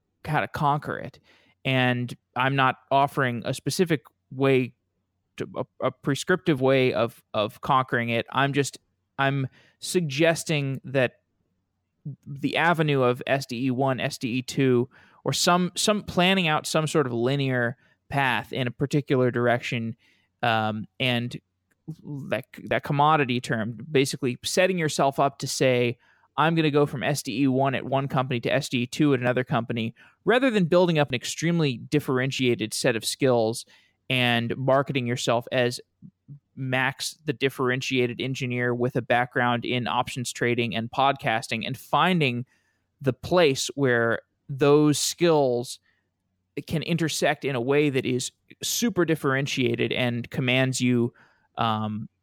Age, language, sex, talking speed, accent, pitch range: 20-39, English, male, 135 wpm, American, 120-145 Hz